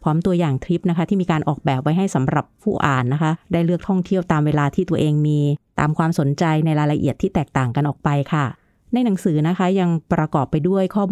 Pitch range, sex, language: 150-190 Hz, female, Thai